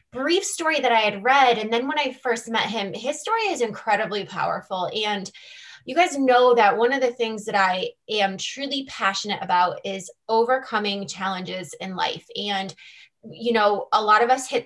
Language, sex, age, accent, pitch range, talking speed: English, female, 20-39, American, 205-255 Hz, 190 wpm